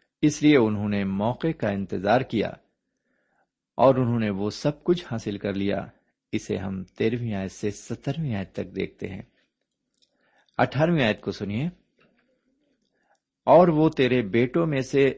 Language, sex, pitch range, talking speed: Urdu, male, 100-145 Hz, 145 wpm